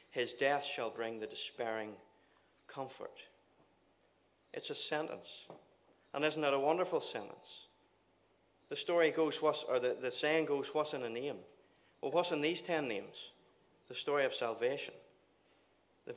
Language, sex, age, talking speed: English, male, 40-59, 145 wpm